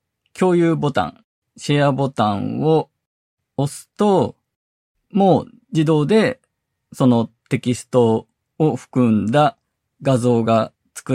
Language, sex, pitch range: Japanese, male, 115-160 Hz